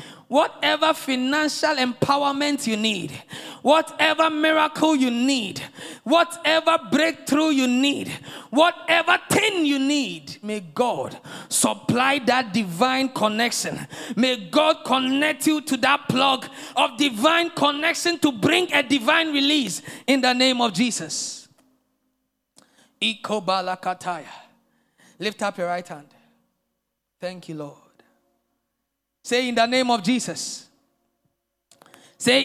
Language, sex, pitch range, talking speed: English, male, 215-290 Hz, 105 wpm